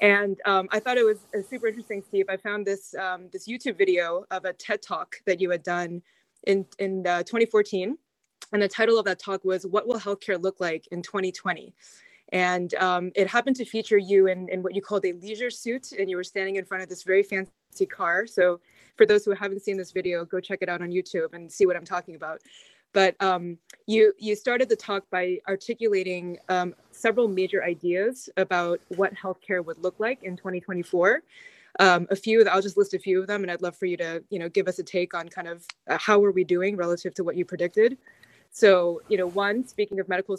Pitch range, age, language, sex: 180-205 Hz, 20-39, English, female